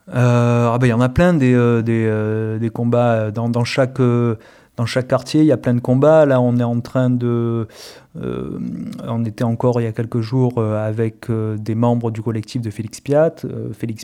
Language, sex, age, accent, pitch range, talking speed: French, male, 30-49, French, 100-120 Hz, 230 wpm